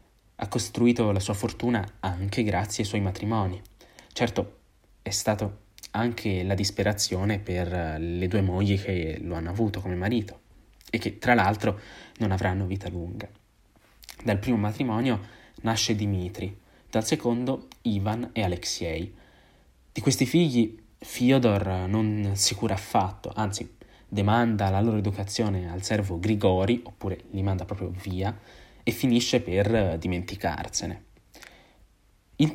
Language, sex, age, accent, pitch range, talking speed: Italian, male, 20-39, native, 95-115 Hz, 130 wpm